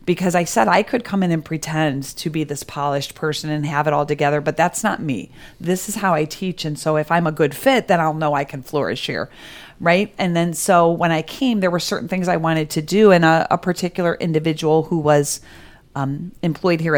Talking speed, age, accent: 235 wpm, 40-59, American